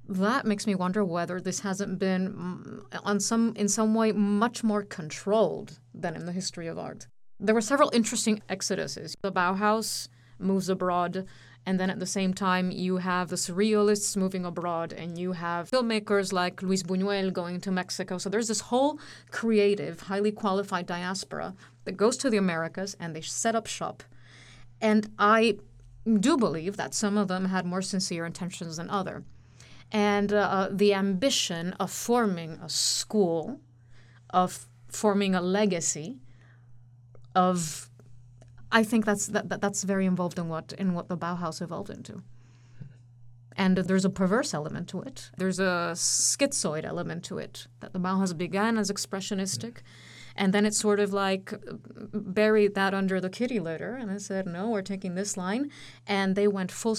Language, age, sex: English, 30-49, female